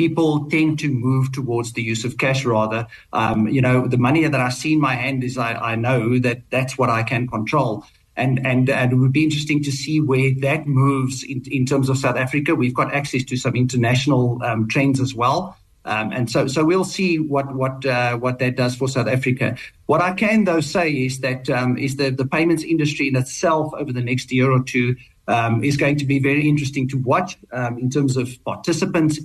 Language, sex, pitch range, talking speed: English, male, 125-155 Hz, 225 wpm